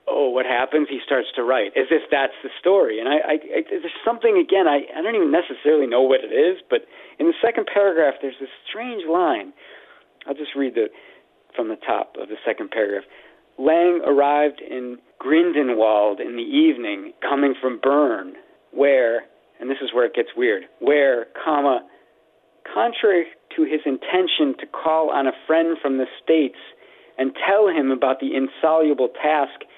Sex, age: male, 40-59